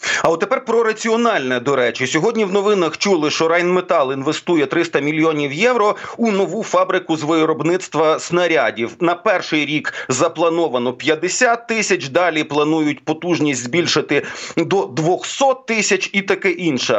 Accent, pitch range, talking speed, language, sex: native, 160-195 Hz, 140 wpm, Ukrainian, male